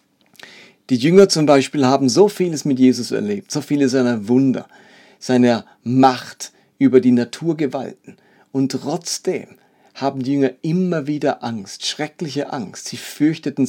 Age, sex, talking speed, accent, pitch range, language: 40-59, male, 135 wpm, German, 120-145 Hz, German